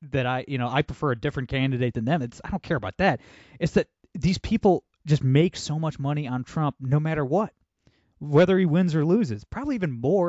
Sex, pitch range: male, 125-165 Hz